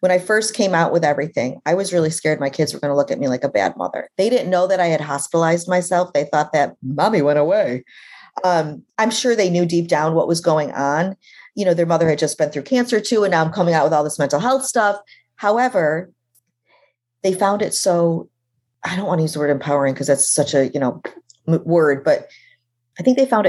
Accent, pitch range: American, 150-200 Hz